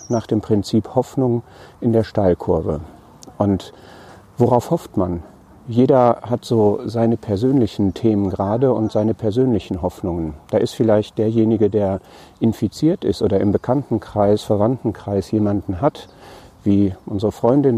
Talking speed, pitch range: 130 wpm, 105-125 Hz